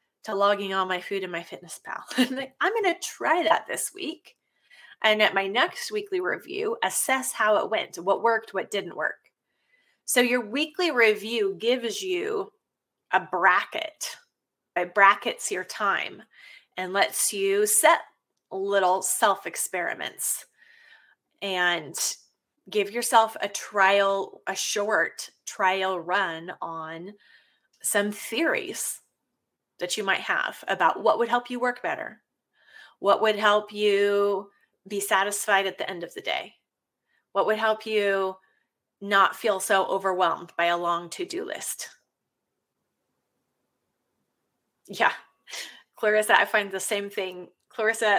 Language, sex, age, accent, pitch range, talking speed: English, female, 20-39, American, 195-240 Hz, 130 wpm